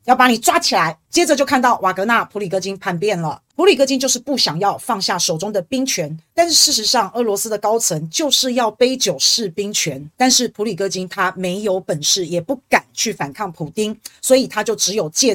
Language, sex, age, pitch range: Chinese, female, 30-49, 190-255 Hz